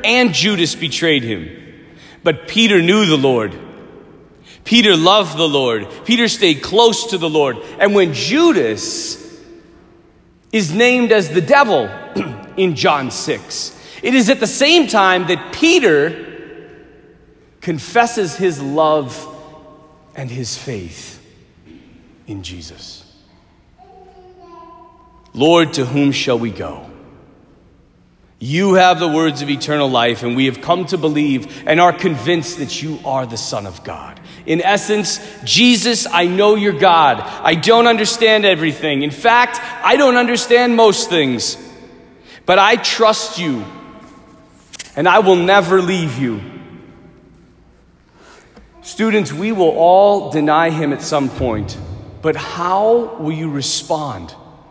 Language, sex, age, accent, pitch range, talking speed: English, male, 40-59, American, 140-225 Hz, 130 wpm